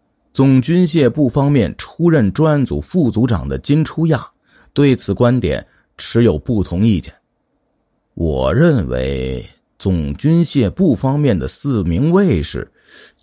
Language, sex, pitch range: Chinese, male, 100-145 Hz